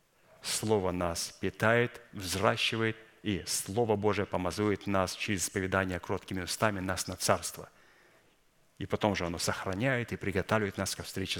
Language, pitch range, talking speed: Russian, 95-115 Hz, 135 wpm